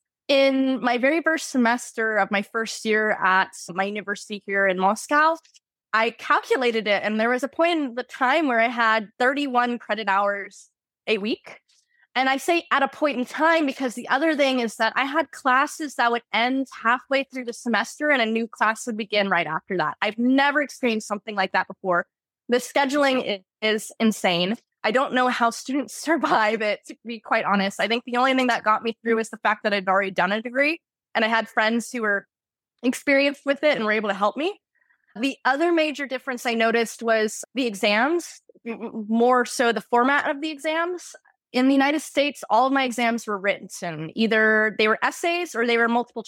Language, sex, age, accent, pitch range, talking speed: English, female, 20-39, American, 215-275 Hz, 205 wpm